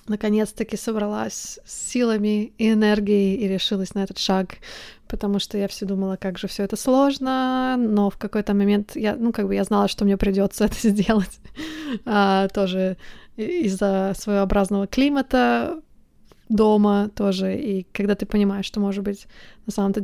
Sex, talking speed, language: female, 155 wpm, Russian